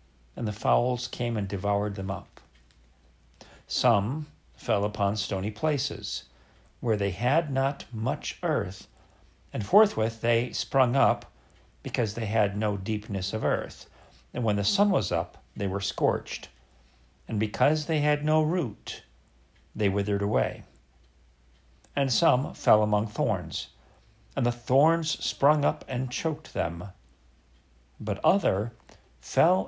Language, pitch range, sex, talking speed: English, 85-140 Hz, male, 130 wpm